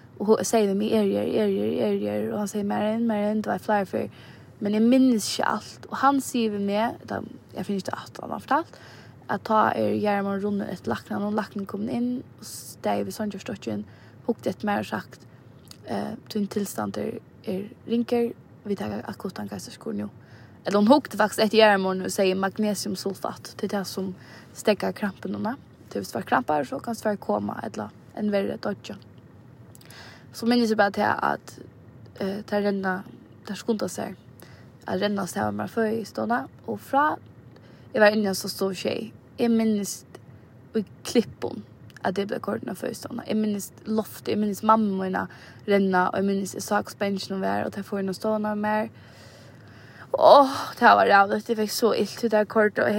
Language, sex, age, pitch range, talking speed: Danish, female, 20-39, 185-215 Hz, 160 wpm